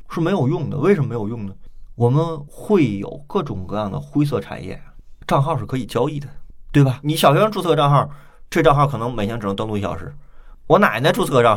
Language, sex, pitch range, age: Chinese, male, 105-160 Hz, 20-39